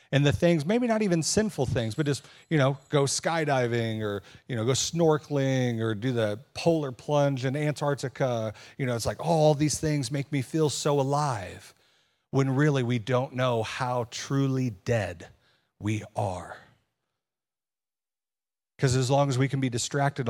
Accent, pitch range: American, 120-145 Hz